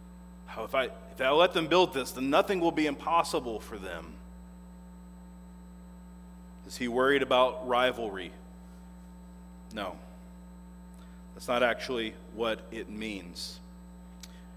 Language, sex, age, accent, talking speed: English, male, 40-59, American, 105 wpm